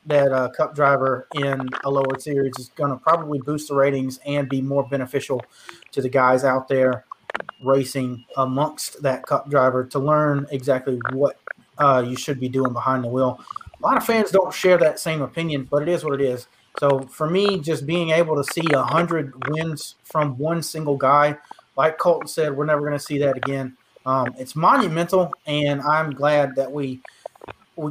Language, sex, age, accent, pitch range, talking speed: English, male, 30-49, American, 135-165 Hz, 195 wpm